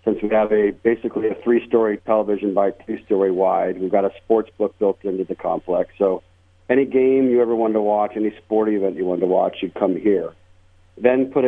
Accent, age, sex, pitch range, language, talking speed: American, 50-69, male, 95-115 Hz, English, 210 wpm